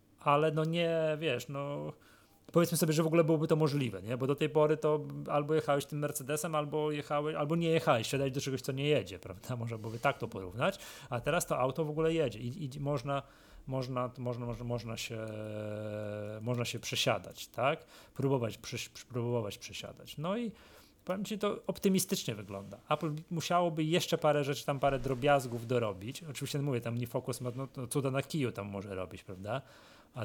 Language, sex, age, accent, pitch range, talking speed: Polish, male, 30-49, native, 115-145 Hz, 185 wpm